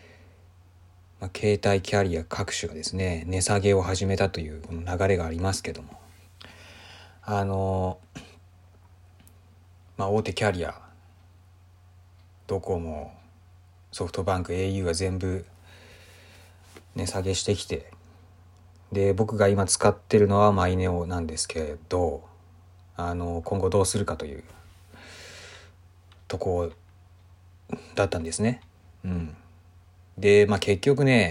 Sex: male